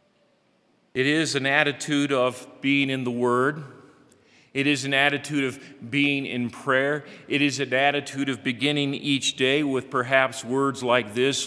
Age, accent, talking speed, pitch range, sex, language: 40-59, American, 155 wpm, 125-145 Hz, male, English